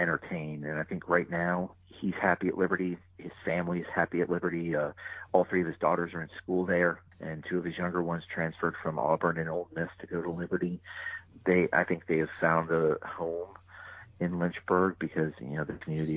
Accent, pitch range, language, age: American, 80-90 Hz, English, 40-59